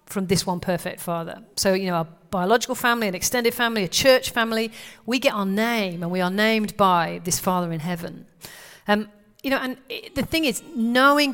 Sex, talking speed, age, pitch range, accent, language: female, 205 wpm, 40-59, 180-225 Hz, British, English